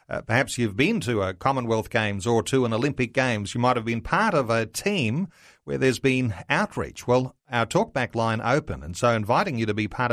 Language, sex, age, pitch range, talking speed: English, male, 40-59, 110-140 Hz, 220 wpm